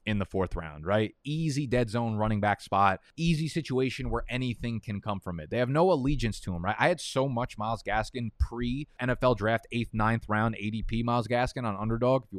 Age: 20-39